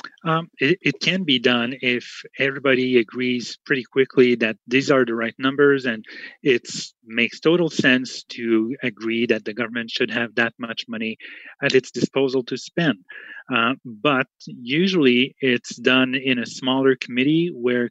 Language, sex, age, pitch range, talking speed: English, male, 30-49, 120-140 Hz, 155 wpm